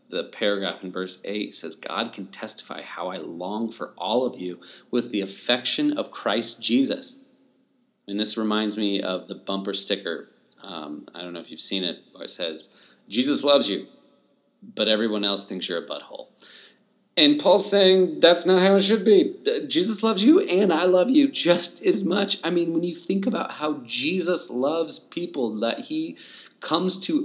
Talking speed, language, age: 185 wpm, English, 30-49